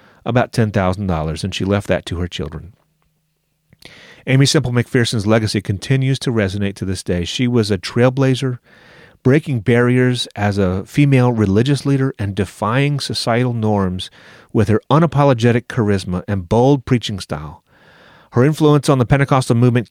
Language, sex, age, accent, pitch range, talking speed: English, male, 30-49, American, 100-135 Hz, 145 wpm